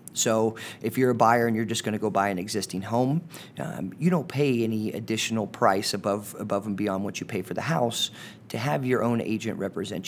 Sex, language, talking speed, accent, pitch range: male, English, 225 wpm, American, 105-120 Hz